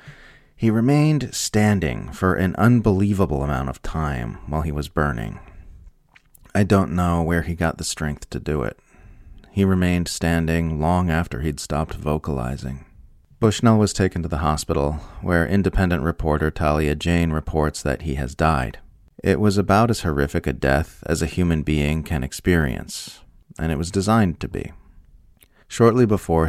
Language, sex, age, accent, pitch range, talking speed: English, male, 30-49, American, 75-95 Hz, 155 wpm